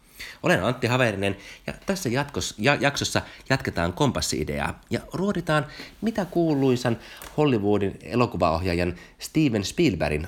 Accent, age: native, 30-49